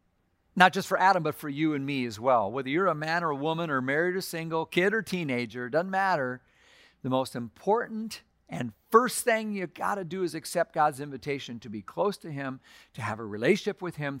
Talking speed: 220 wpm